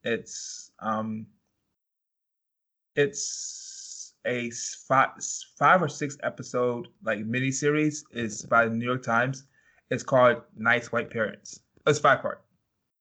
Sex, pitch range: male, 115-135 Hz